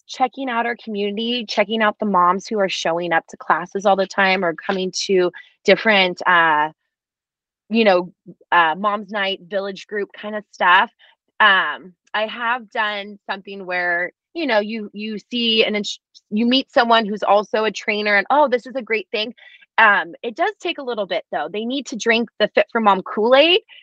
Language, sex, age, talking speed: English, female, 20-39, 190 wpm